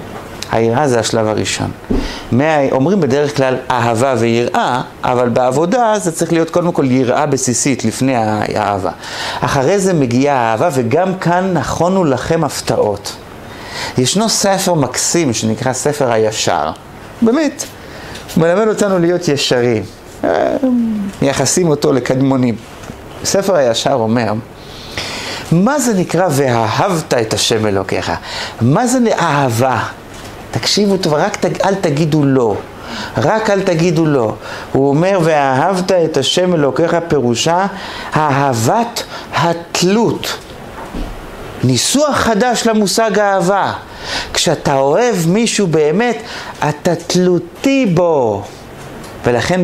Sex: male